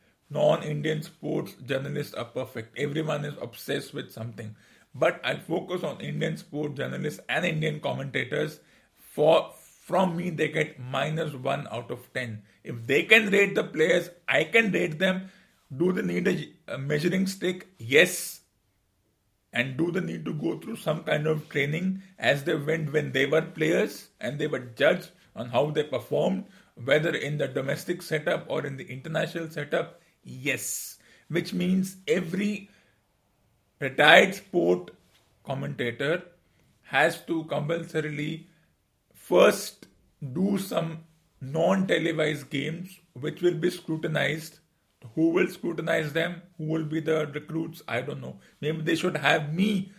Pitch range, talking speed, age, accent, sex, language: 145-175 Hz, 145 wpm, 50-69, Indian, male, English